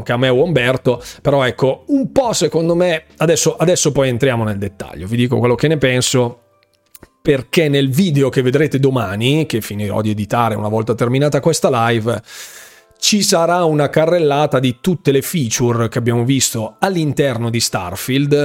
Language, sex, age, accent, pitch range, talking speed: Italian, male, 30-49, native, 120-150 Hz, 170 wpm